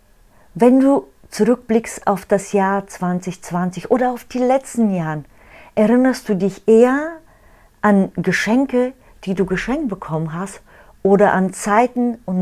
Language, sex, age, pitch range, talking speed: German, female, 40-59, 160-205 Hz, 130 wpm